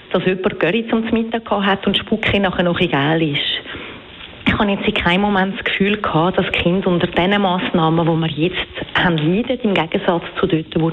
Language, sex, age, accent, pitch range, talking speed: German, female, 40-59, Austrian, 170-210 Hz, 190 wpm